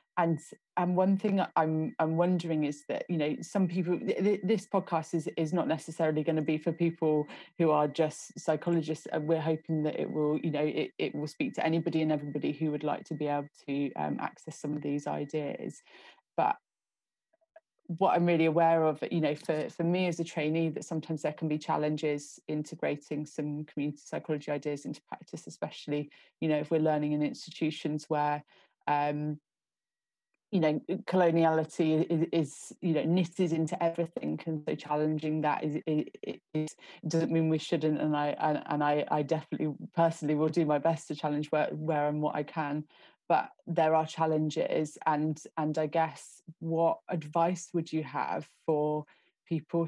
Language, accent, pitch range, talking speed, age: English, British, 150-165 Hz, 180 wpm, 30-49